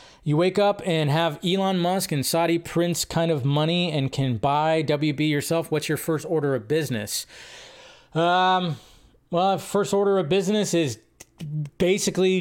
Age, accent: 20-39, American